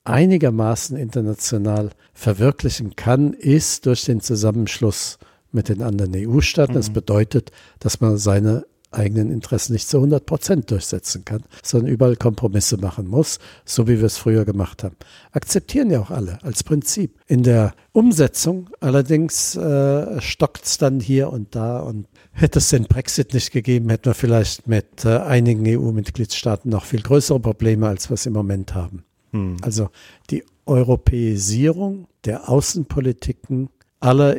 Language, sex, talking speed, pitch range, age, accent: German, male, 145 wpm, 105-135 Hz, 60-79, German